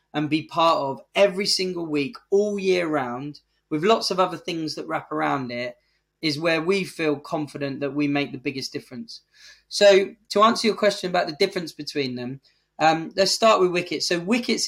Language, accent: English, British